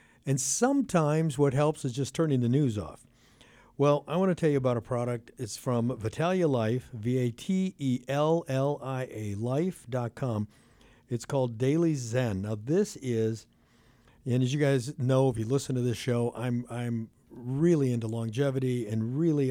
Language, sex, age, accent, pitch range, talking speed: English, male, 60-79, American, 115-140 Hz, 155 wpm